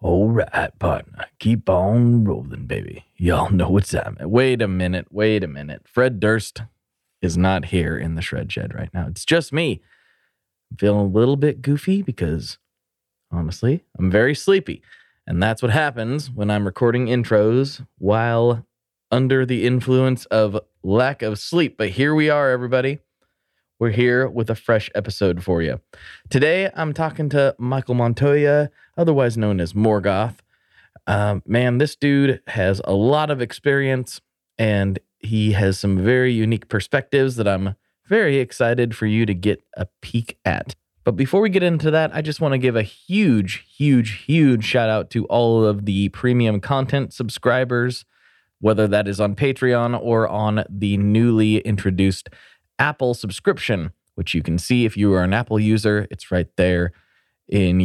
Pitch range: 100-130 Hz